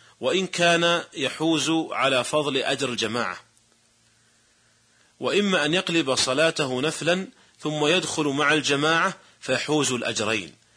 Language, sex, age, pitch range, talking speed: Arabic, male, 40-59, 120-155 Hz, 100 wpm